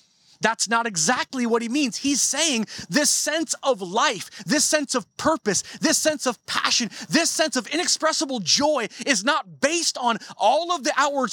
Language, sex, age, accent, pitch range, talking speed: English, male, 30-49, American, 195-285 Hz, 175 wpm